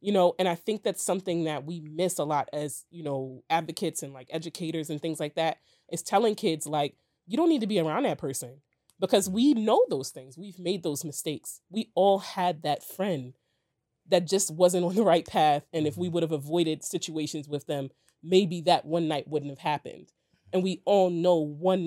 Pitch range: 150-190 Hz